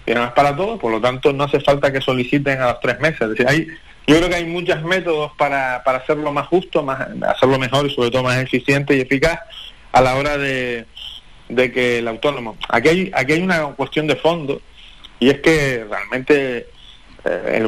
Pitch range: 125-160 Hz